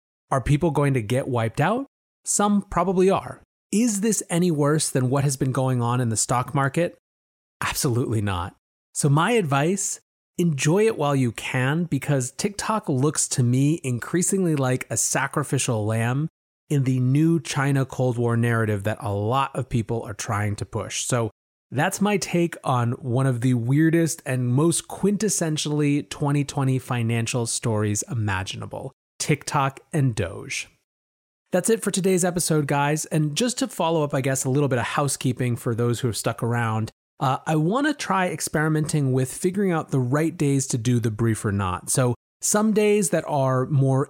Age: 30-49